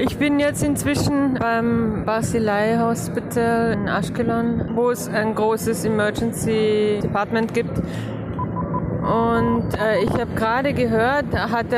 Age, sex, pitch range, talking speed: 20-39, female, 210-235 Hz, 110 wpm